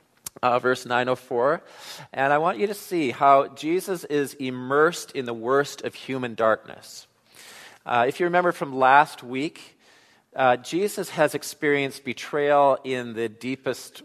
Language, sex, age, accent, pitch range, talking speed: English, male, 40-59, American, 125-155 Hz, 145 wpm